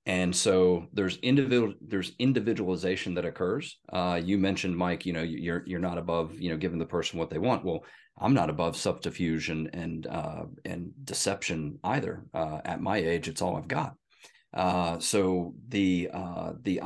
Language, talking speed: English, 175 wpm